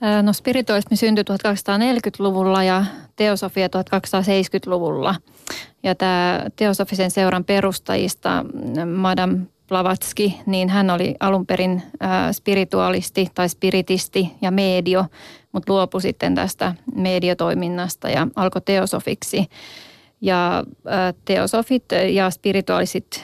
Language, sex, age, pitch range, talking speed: Finnish, female, 30-49, 180-195 Hz, 90 wpm